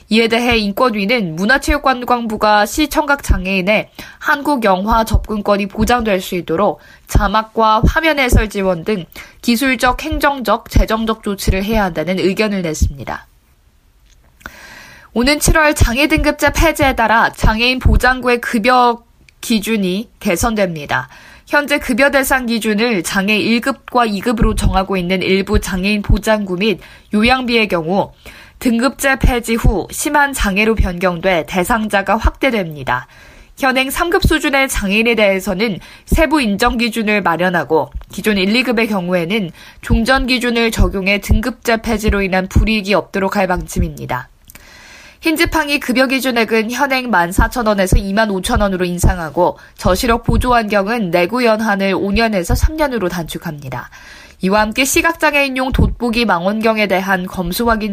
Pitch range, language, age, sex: 190-250 Hz, Korean, 20-39, female